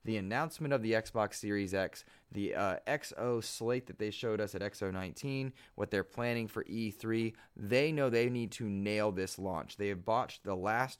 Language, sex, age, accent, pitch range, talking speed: English, male, 20-39, American, 95-120 Hz, 190 wpm